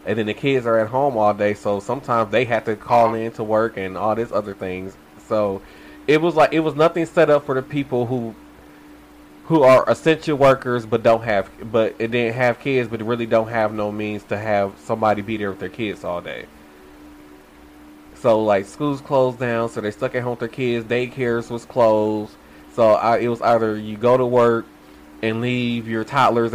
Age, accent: 20-39, American